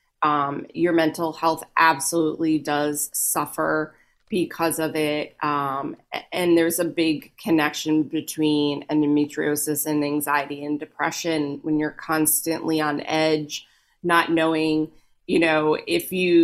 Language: English